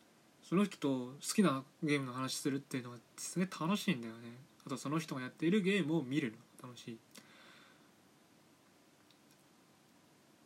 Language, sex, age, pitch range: Japanese, male, 20-39, 125-170 Hz